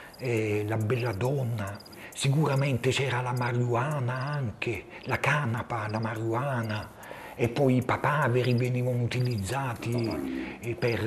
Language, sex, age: Italian, male, 50-69